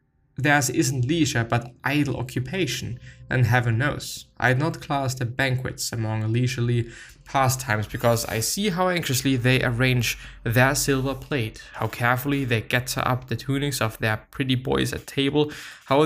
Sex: male